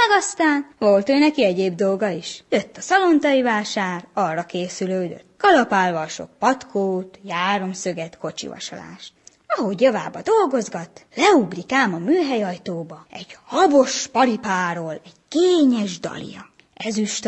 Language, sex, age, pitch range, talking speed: Hungarian, female, 20-39, 190-255 Hz, 110 wpm